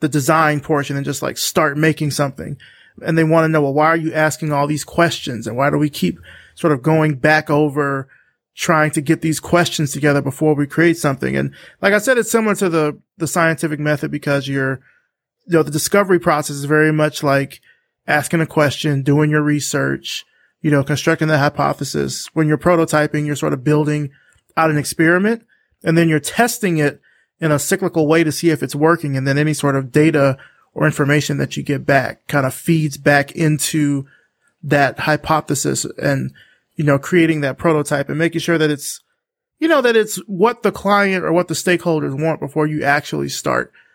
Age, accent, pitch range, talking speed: 30-49, American, 145-165 Hz, 200 wpm